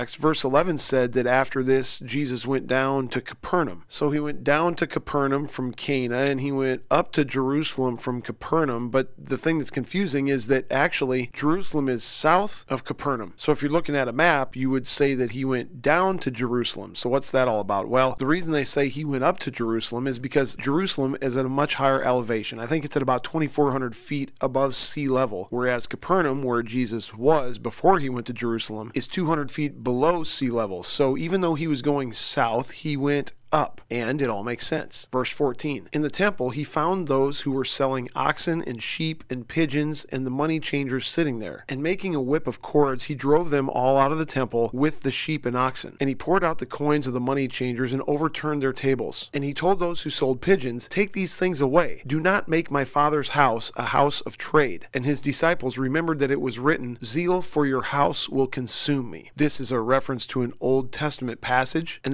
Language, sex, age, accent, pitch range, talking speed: English, male, 40-59, American, 125-150 Hz, 215 wpm